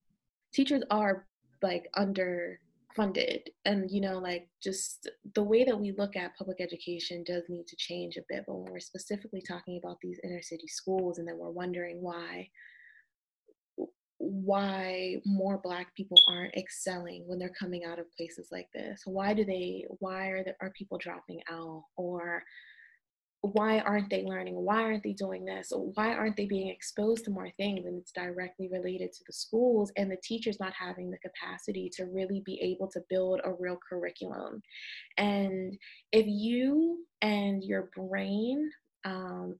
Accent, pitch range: American, 180-205 Hz